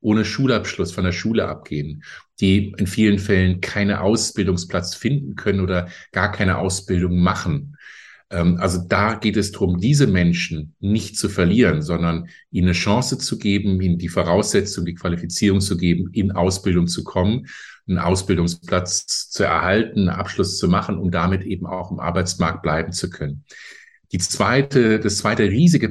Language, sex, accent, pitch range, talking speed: German, male, German, 90-105 Hz, 155 wpm